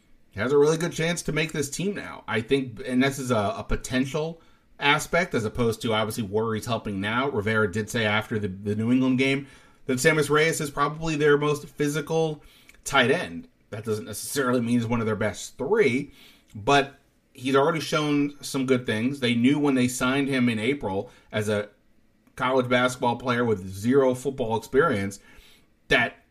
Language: English